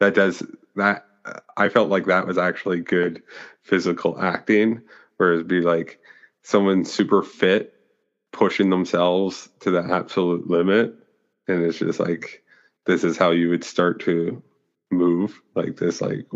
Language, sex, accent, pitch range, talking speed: English, male, American, 85-95 Hz, 145 wpm